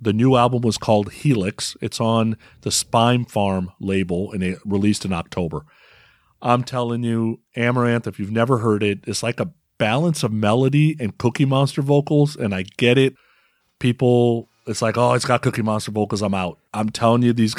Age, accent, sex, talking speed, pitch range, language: 40-59, American, male, 190 wpm, 105-125 Hz, English